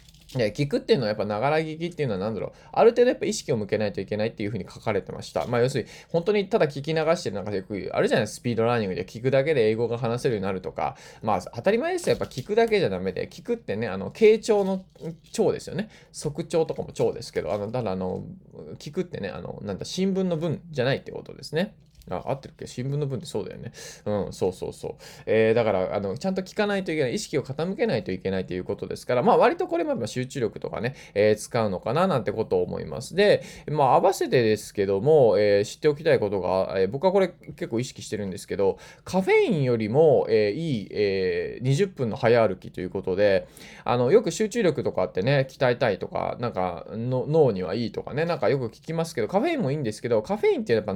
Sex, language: male, Japanese